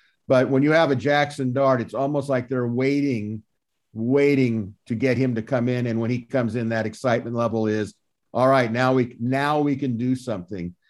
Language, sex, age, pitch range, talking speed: English, male, 50-69, 120-145 Hz, 205 wpm